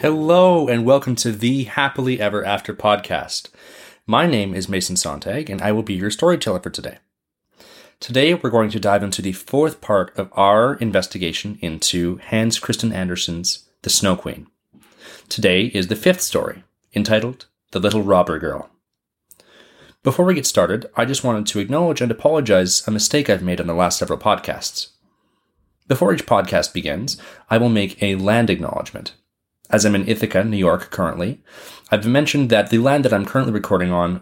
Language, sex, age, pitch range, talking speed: English, male, 30-49, 95-120 Hz, 170 wpm